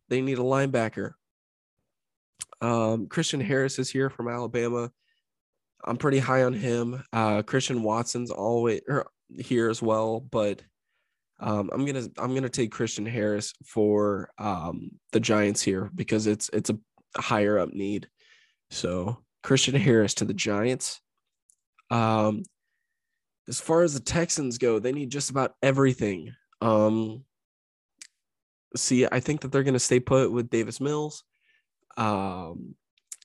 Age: 20-39